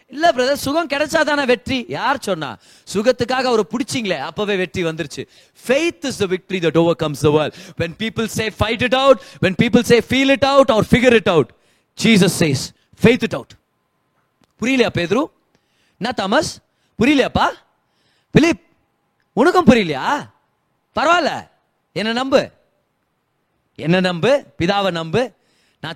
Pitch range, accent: 165-230 Hz, native